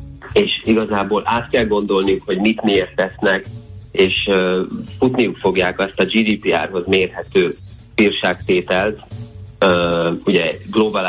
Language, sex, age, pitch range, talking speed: Hungarian, male, 30-49, 90-110 Hz, 110 wpm